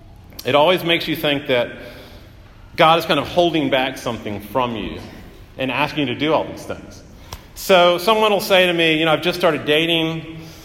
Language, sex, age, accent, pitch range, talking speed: English, male, 40-59, American, 115-170 Hz, 195 wpm